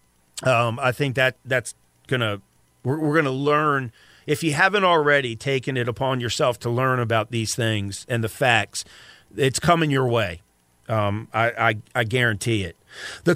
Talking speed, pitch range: 170 wpm, 110-145 Hz